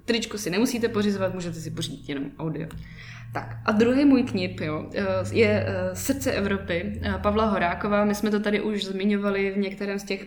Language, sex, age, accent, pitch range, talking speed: Czech, female, 20-39, native, 175-210 Hz, 170 wpm